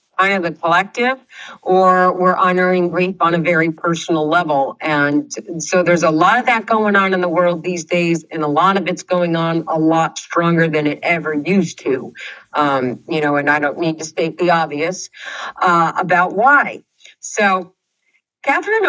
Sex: female